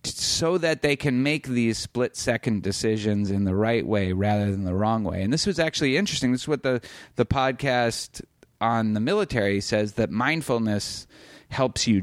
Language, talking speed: English, 185 wpm